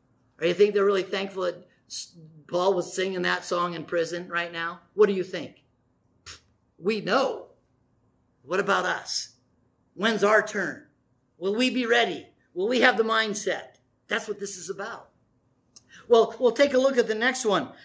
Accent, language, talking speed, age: American, English, 170 wpm, 50-69